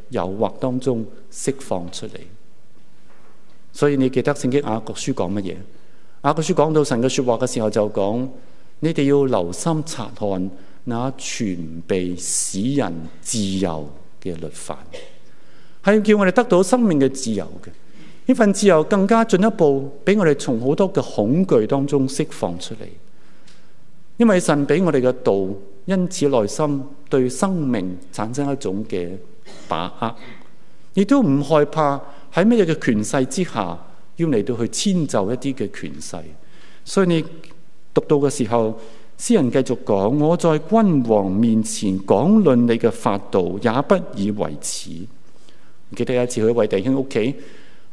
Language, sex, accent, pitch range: Chinese, male, native, 105-155 Hz